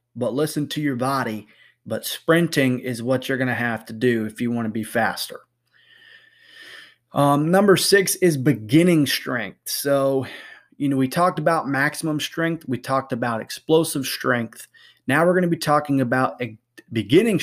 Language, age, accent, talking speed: English, 30-49, American, 165 wpm